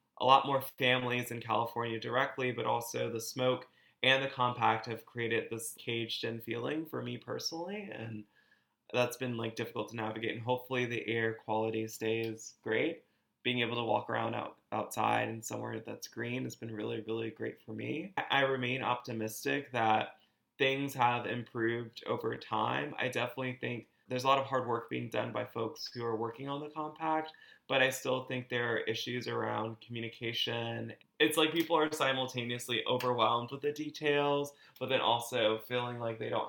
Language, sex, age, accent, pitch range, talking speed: English, male, 20-39, American, 115-130 Hz, 175 wpm